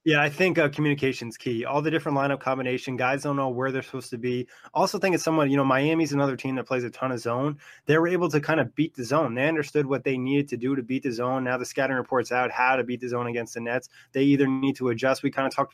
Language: English